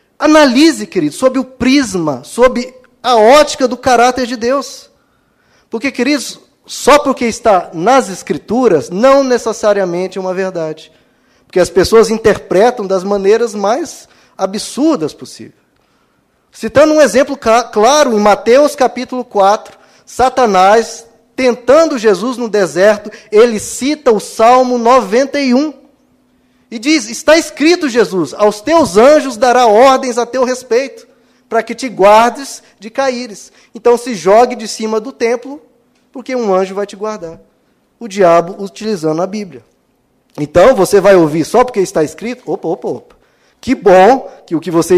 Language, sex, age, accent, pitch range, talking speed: Portuguese, male, 20-39, Brazilian, 190-260 Hz, 140 wpm